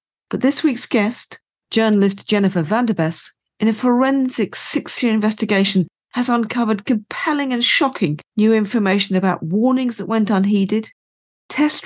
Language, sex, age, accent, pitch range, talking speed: English, female, 40-59, British, 175-230 Hz, 125 wpm